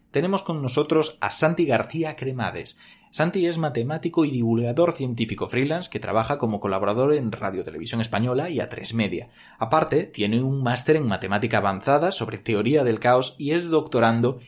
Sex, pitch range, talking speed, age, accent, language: male, 110-150 Hz, 165 wpm, 30-49, Spanish, Spanish